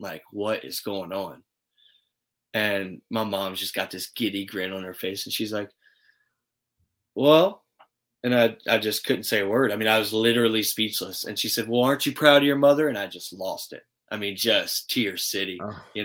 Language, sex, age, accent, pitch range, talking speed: English, male, 20-39, American, 100-120 Hz, 210 wpm